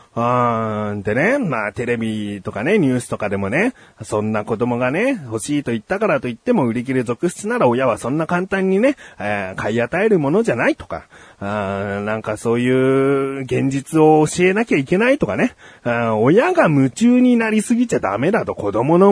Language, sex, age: Japanese, male, 30-49